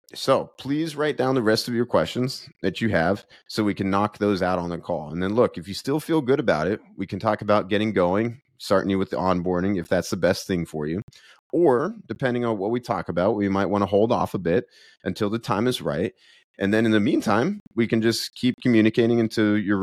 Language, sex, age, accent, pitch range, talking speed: English, male, 30-49, American, 95-120 Hz, 245 wpm